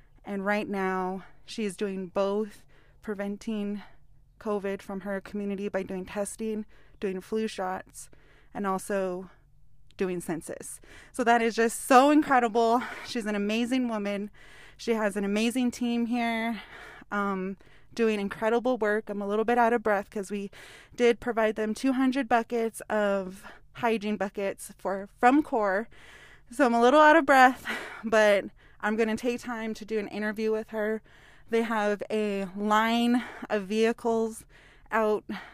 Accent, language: American, English